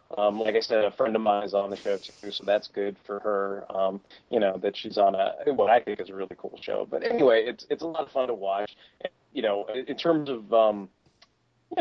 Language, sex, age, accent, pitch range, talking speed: English, male, 20-39, American, 100-115 Hz, 260 wpm